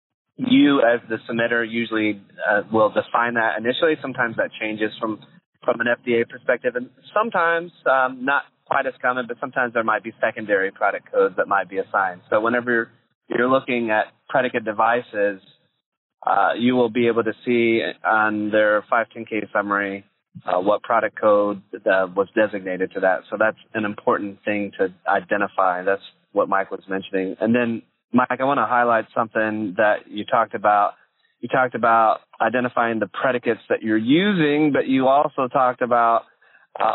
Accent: American